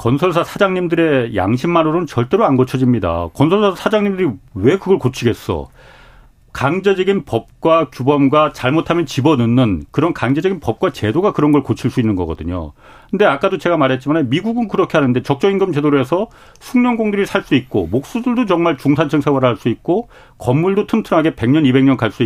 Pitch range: 125-180 Hz